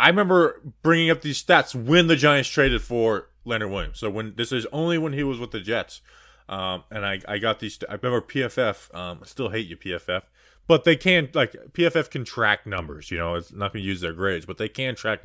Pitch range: 110-160 Hz